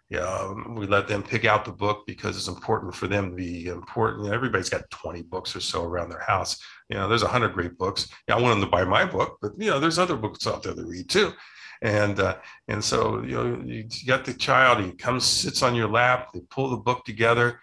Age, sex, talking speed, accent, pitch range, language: 50-69, male, 260 wpm, American, 105-155 Hz, English